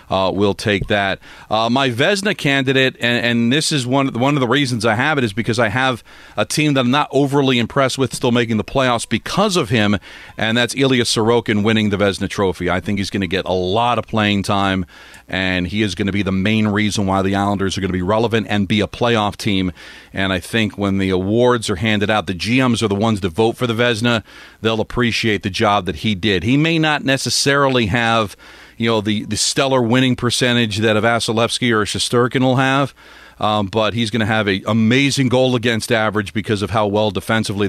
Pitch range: 100-125 Hz